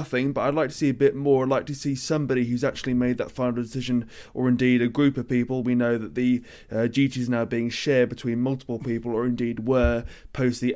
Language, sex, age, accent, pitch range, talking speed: English, male, 20-39, British, 120-140 Hz, 245 wpm